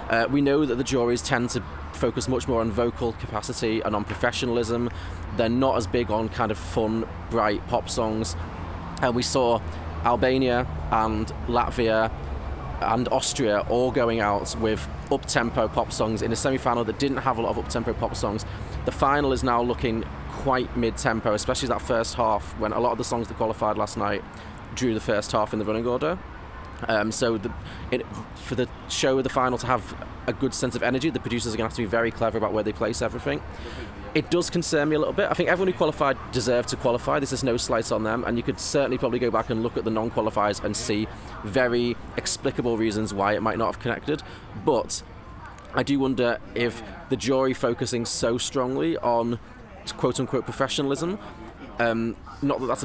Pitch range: 105-125 Hz